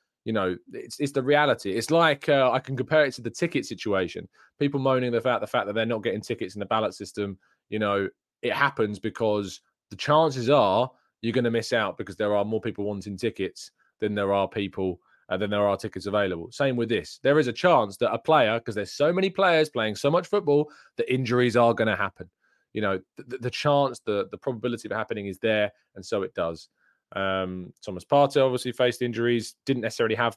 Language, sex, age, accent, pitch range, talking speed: English, male, 20-39, British, 105-140 Hz, 225 wpm